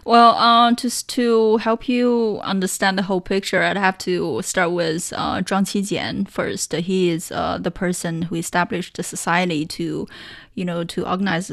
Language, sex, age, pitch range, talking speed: English, female, 20-39, 175-200 Hz, 170 wpm